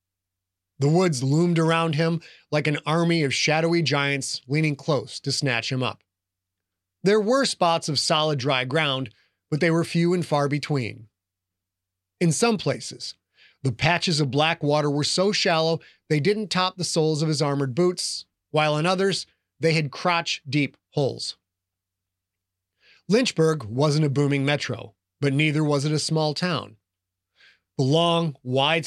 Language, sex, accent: English, male, American